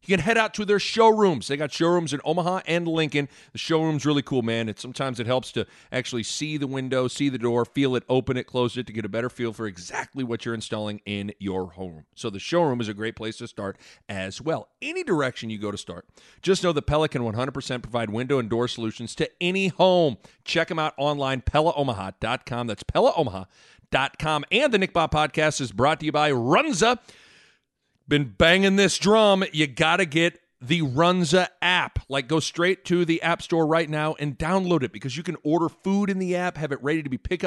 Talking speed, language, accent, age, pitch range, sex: 215 wpm, English, American, 40-59, 125-175 Hz, male